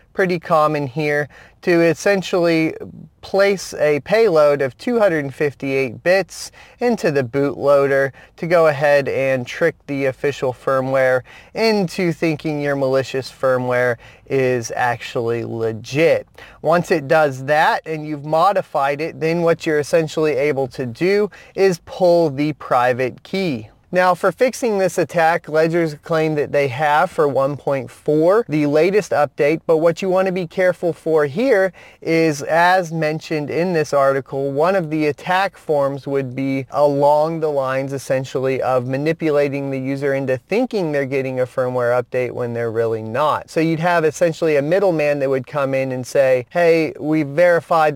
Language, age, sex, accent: English, 30-49, male, American